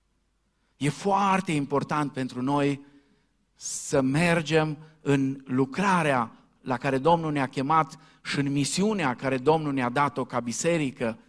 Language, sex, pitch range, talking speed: Romanian, male, 125-175 Hz, 120 wpm